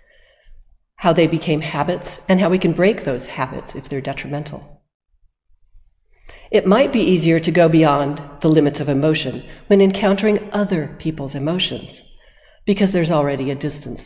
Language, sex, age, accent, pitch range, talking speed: English, female, 50-69, American, 140-195 Hz, 150 wpm